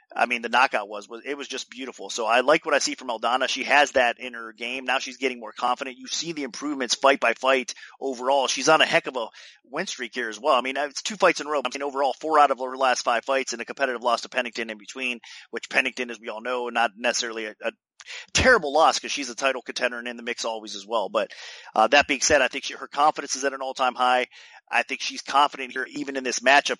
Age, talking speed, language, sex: 30-49, 275 wpm, English, male